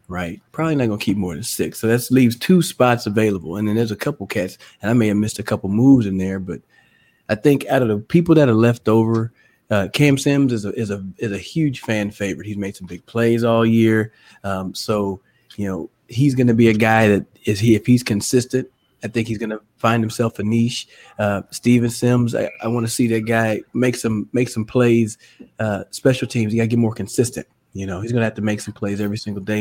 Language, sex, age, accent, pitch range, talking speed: English, male, 30-49, American, 105-125 Hz, 250 wpm